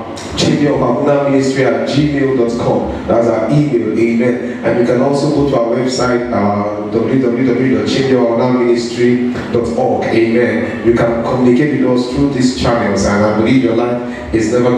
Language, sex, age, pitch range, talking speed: English, male, 30-49, 110-130 Hz, 130 wpm